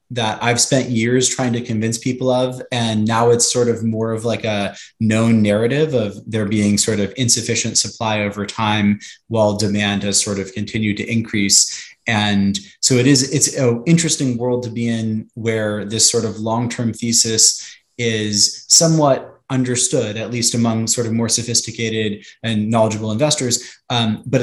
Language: English